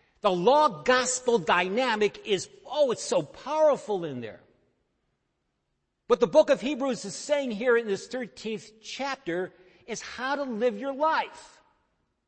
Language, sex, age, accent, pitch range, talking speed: English, male, 50-69, American, 180-265 Hz, 135 wpm